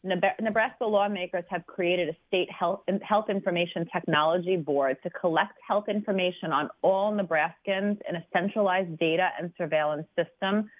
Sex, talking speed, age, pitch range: female, 140 wpm, 30-49, 170-205 Hz